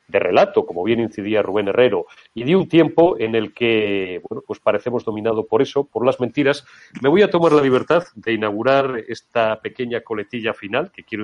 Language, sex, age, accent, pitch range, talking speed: Spanish, male, 40-59, Spanish, 105-135 Hz, 200 wpm